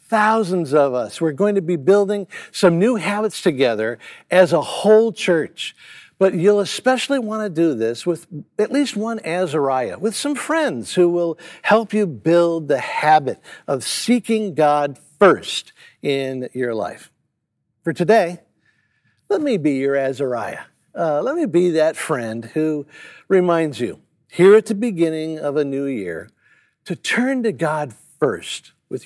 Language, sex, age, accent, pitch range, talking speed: English, male, 60-79, American, 145-210 Hz, 155 wpm